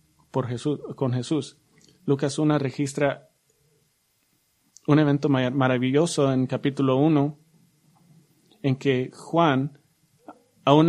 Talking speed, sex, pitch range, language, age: 95 wpm, male, 140-165 Hz, English, 30-49